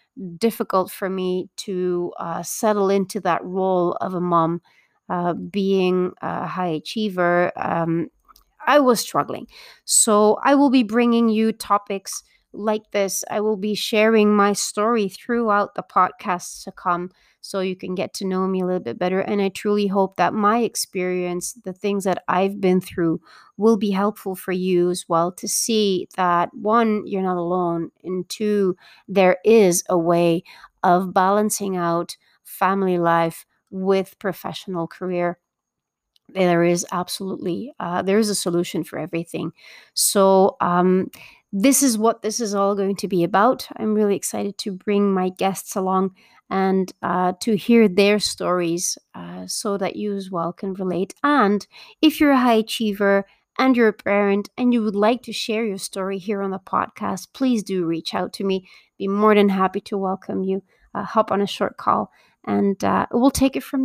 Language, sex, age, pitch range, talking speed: English, female, 30-49, 180-215 Hz, 175 wpm